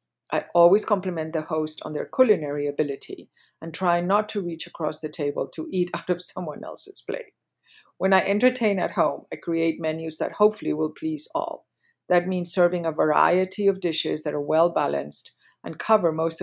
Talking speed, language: 185 wpm, English